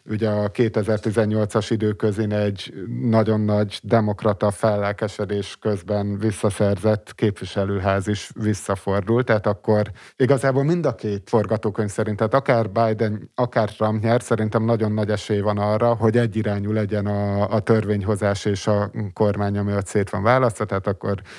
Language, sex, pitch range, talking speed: Hungarian, male, 105-125 Hz, 140 wpm